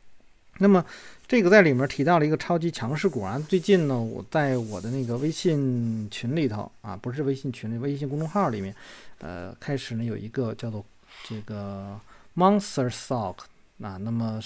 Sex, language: male, Chinese